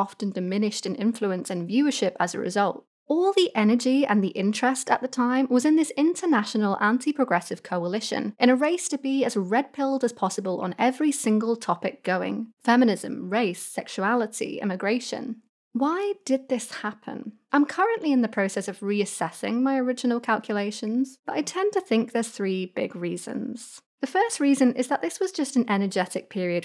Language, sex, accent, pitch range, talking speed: English, female, British, 195-255 Hz, 170 wpm